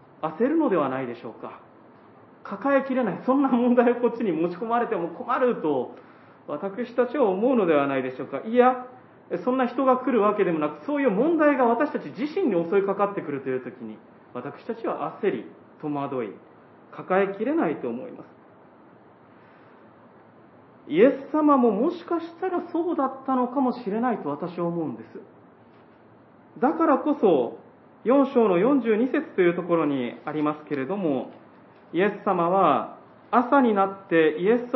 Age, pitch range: 40-59, 175-270 Hz